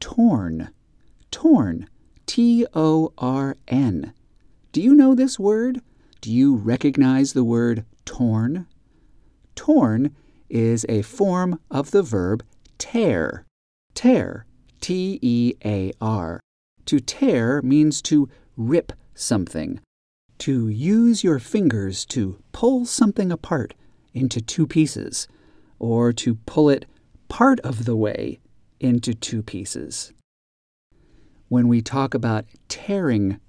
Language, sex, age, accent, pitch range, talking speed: English, male, 50-69, American, 105-160 Hz, 100 wpm